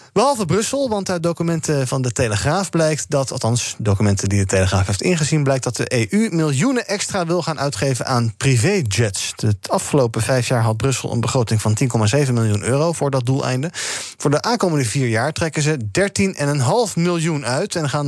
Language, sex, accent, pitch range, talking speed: Dutch, male, Dutch, 115-170 Hz, 185 wpm